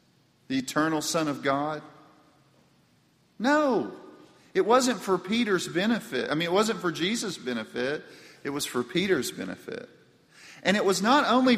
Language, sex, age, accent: English, male, 40-59, American